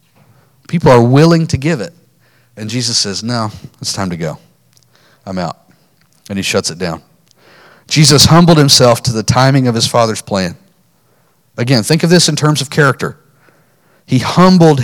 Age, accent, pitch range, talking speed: 40-59, American, 115-145 Hz, 165 wpm